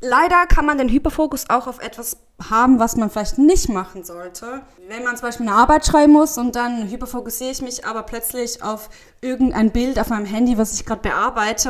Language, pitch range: German, 215-270 Hz